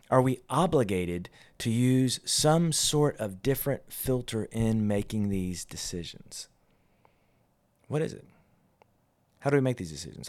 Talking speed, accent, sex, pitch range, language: 135 wpm, American, male, 115-150 Hz, English